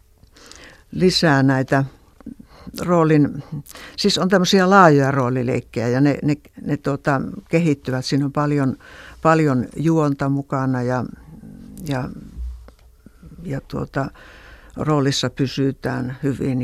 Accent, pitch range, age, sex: native, 130-160 Hz, 60-79, female